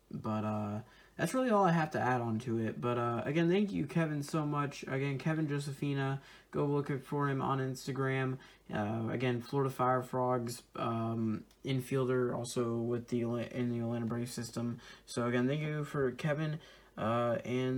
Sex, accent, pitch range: male, American, 120-145 Hz